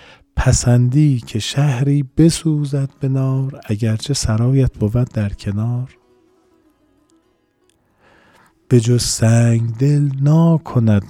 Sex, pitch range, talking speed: male, 95-120 Hz, 85 wpm